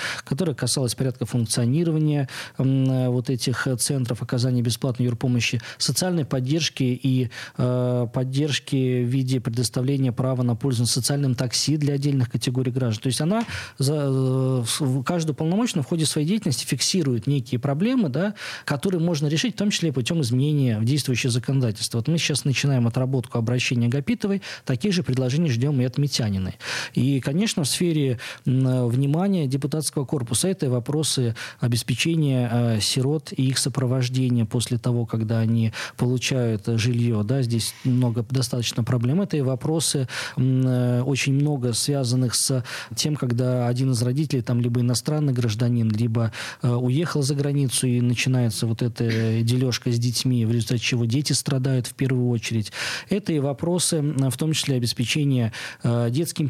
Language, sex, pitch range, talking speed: Russian, male, 120-145 Hz, 150 wpm